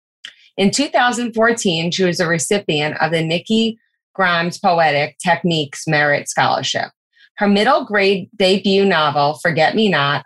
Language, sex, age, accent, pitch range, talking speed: English, female, 20-39, American, 150-185 Hz, 130 wpm